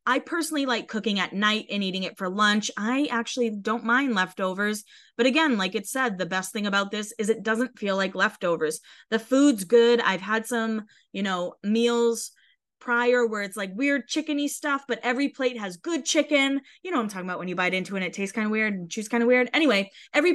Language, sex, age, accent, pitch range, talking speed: English, female, 20-39, American, 195-265 Hz, 225 wpm